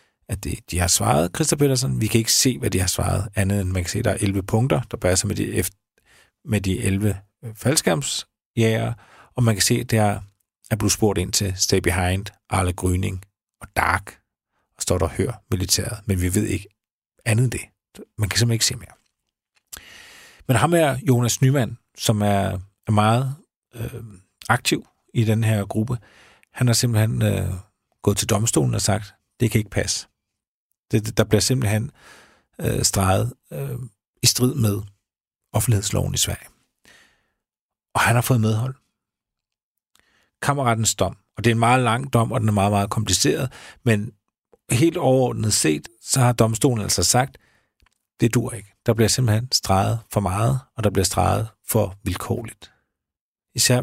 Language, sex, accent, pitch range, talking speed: Danish, male, native, 100-120 Hz, 175 wpm